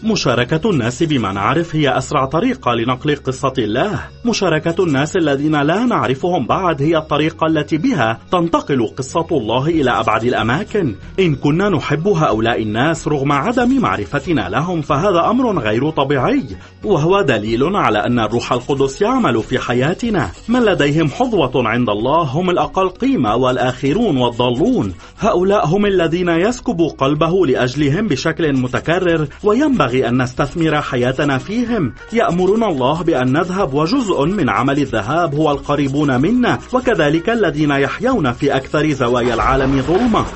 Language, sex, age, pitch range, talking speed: Arabic, male, 30-49, 130-180 Hz, 135 wpm